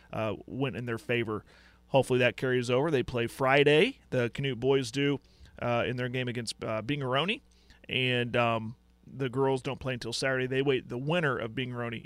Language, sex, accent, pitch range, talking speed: English, male, American, 120-140 Hz, 185 wpm